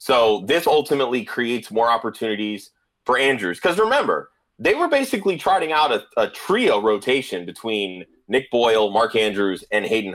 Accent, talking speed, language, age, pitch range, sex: American, 155 wpm, English, 30-49, 115-165 Hz, male